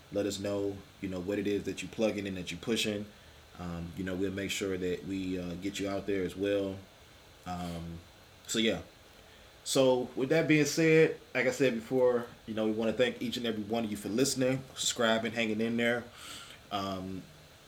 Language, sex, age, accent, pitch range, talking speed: English, male, 20-39, American, 95-110 Hz, 205 wpm